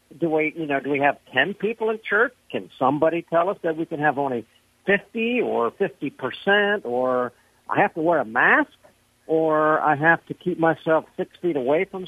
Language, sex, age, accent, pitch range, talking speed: English, male, 60-79, American, 130-180 Hz, 200 wpm